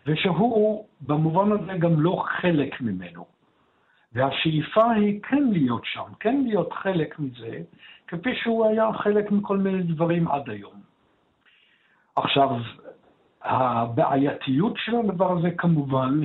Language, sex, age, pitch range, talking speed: Hebrew, male, 60-79, 130-185 Hz, 115 wpm